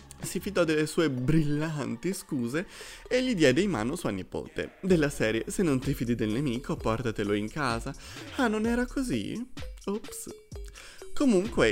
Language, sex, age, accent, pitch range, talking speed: Italian, male, 30-49, native, 115-180 Hz, 155 wpm